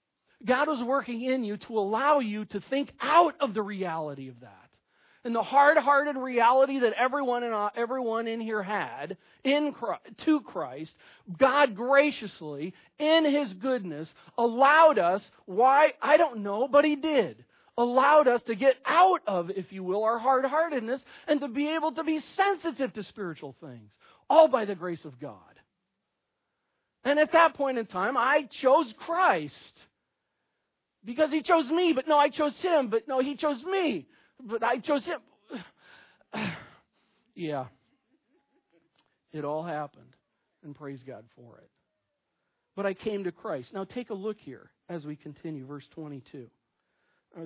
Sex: male